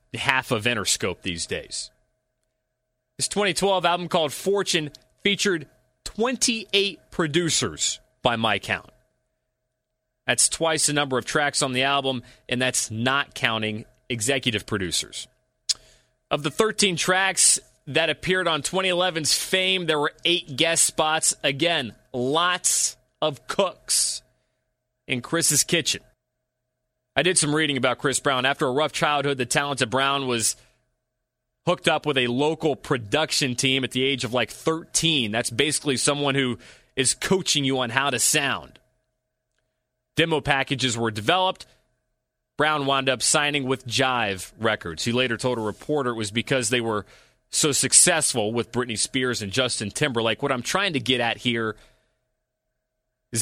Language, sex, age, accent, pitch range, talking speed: English, male, 30-49, American, 125-150 Hz, 145 wpm